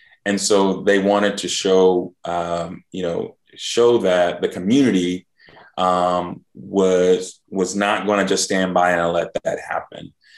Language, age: English, 20-39